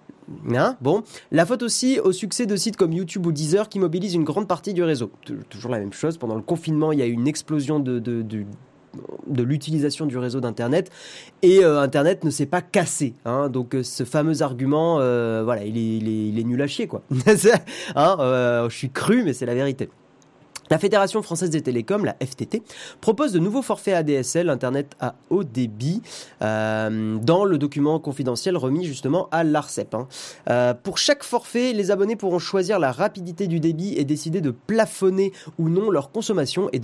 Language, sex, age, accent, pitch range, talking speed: French, male, 30-49, French, 125-175 Hz, 200 wpm